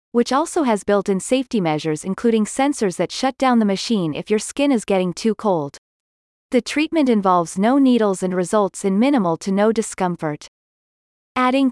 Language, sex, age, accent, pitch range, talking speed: English, female, 30-49, American, 185-245 Hz, 175 wpm